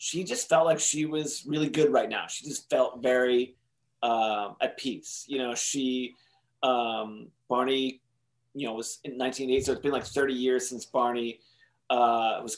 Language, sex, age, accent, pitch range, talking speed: English, male, 30-49, American, 125-160 Hz, 175 wpm